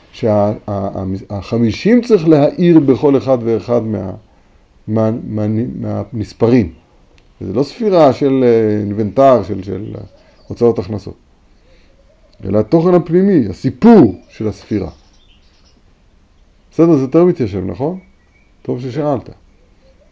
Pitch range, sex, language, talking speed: 100-150 Hz, male, Hebrew, 105 wpm